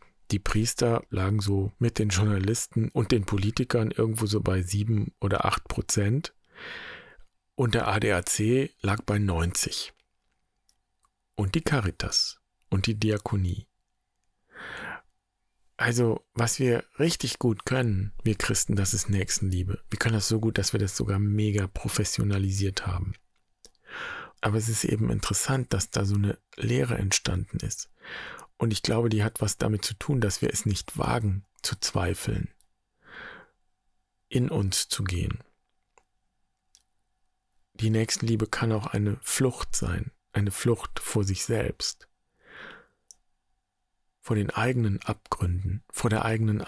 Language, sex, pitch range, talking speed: German, male, 100-115 Hz, 130 wpm